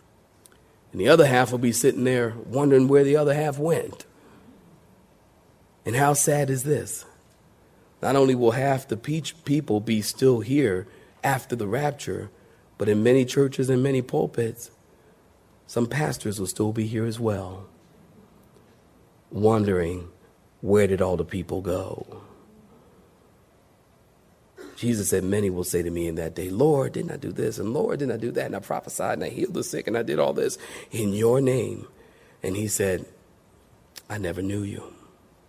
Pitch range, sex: 110-145 Hz, male